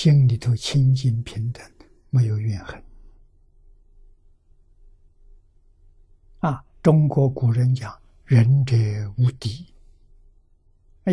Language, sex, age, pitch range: Chinese, male, 60-79, 80-130 Hz